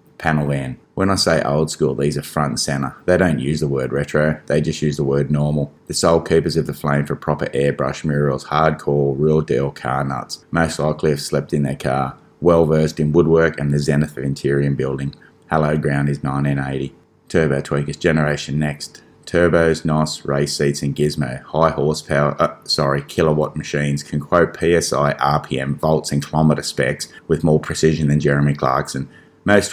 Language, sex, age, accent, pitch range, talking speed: English, male, 20-39, Australian, 70-80 Hz, 185 wpm